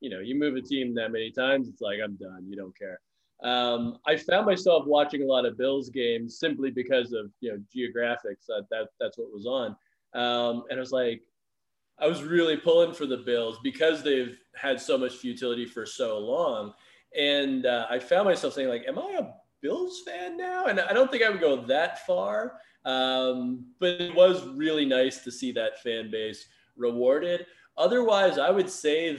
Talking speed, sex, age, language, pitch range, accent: 200 wpm, male, 20-39, English, 115-150 Hz, American